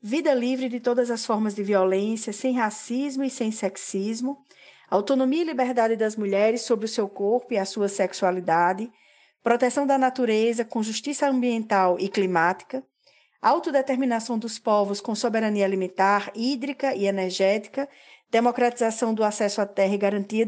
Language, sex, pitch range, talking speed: Portuguese, female, 205-255 Hz, 145 wpm